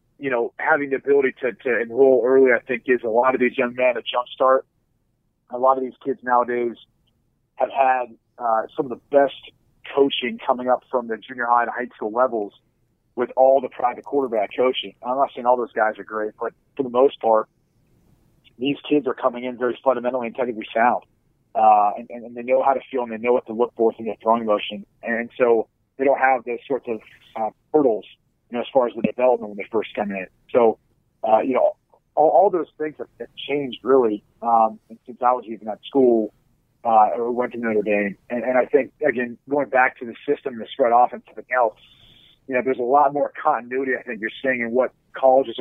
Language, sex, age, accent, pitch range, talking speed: English, male, 40-59, American, 115-130 Hz, 220 wpm